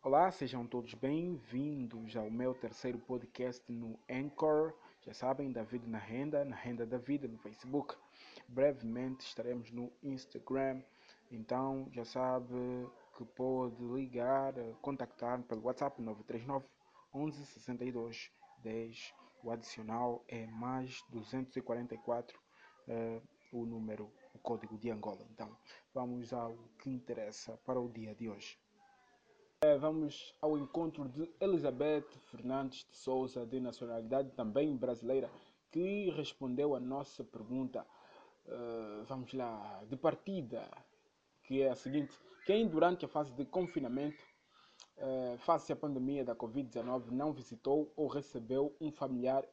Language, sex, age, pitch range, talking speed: Portuguese, male, 20-39, 120-140 Hz, 125 wpm